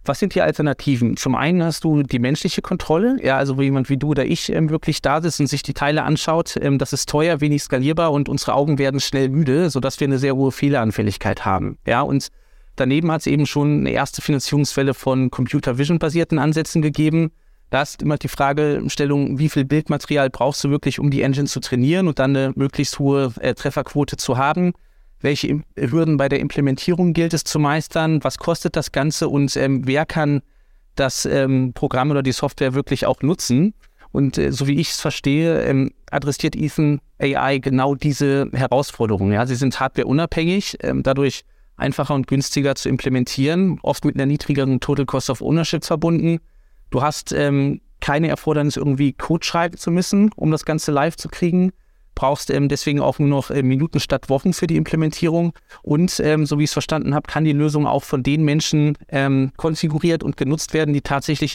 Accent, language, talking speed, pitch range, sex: German, German, 195 wpm, 135-155 Hz, male